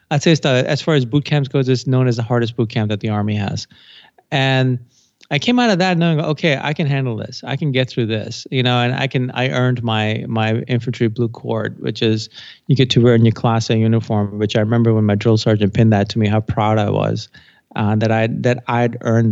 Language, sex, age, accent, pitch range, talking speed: English, male, 30-49, American, 110-130 Hz, 255 wpm